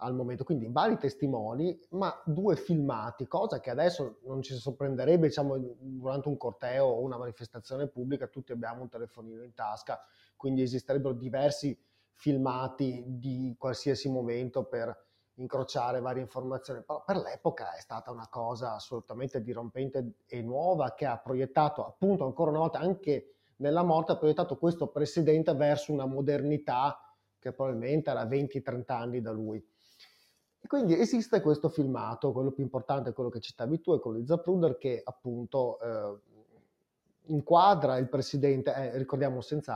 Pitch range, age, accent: 120-145 Hz, 30-49, native